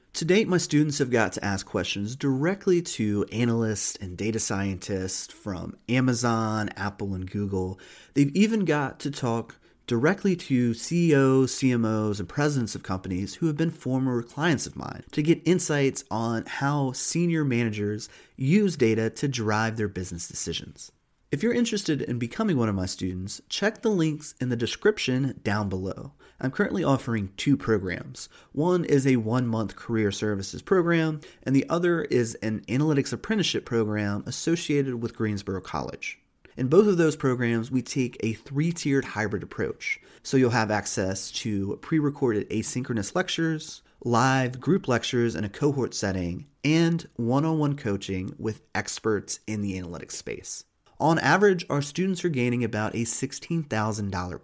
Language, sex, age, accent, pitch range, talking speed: English, male, 30-49, American, 105-150 Hz, 155 wpm